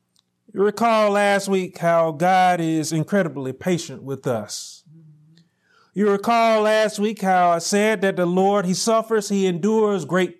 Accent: American